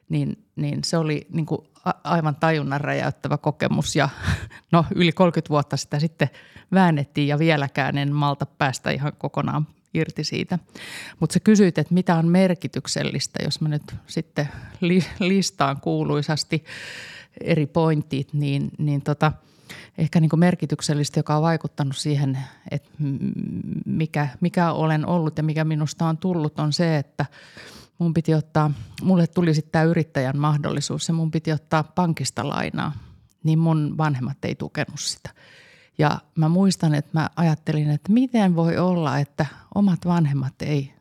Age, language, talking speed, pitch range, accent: 30-49, Finnish, 150 wpm, 145-170 Hz, native